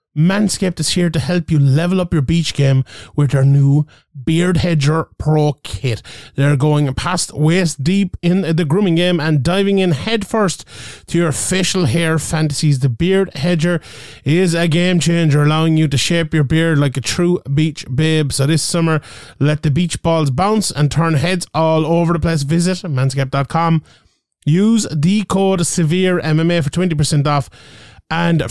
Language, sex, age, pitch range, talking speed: English, male, 30-49, 140-170 Hz, 170 wpm